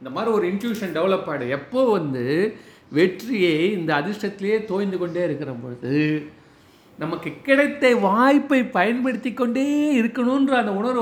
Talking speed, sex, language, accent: 125 wpm, male, Tamil, native